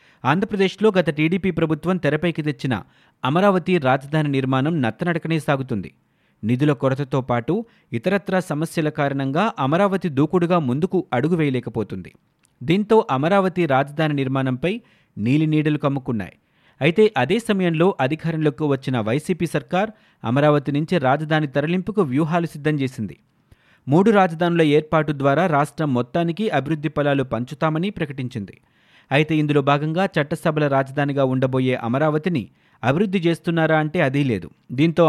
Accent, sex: native, male